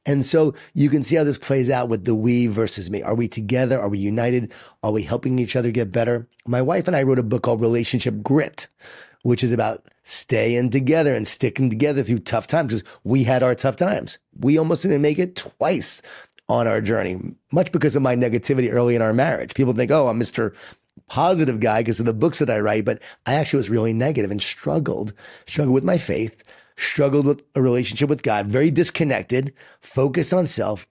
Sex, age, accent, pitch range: male, 30-49, American, 115-150 Hz